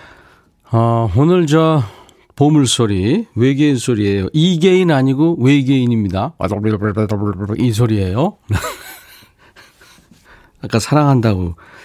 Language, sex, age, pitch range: Korean, male, 40-59, 95-150 Hz